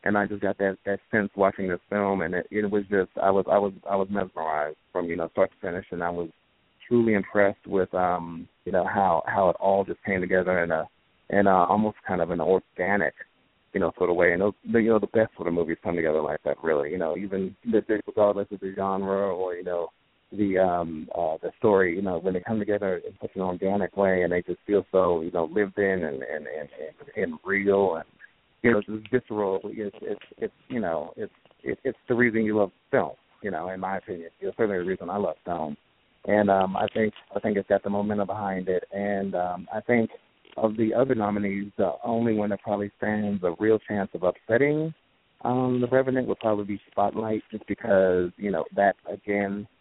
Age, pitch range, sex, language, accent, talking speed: 30-49, 95-105 Hz, male, English, American, 225 wpm